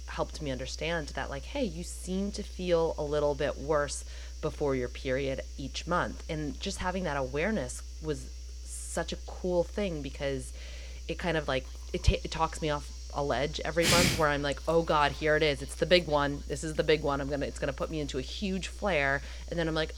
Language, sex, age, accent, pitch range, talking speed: English, female, 30-49, American, 130-160 Hz, 220 wpm